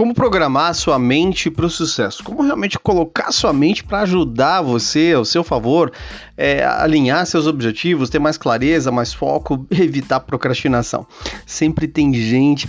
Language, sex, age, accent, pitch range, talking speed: Portuguese, male, 40-59, Brazilian, 130-165 Hz, 150 wpm